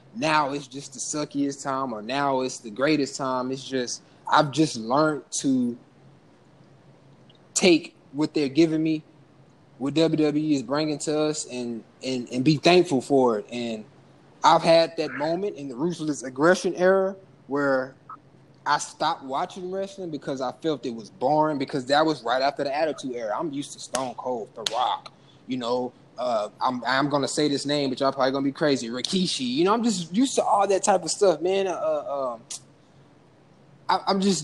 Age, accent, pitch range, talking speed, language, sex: 20-39, American, 135-165 Hz, 180 wpm, English, male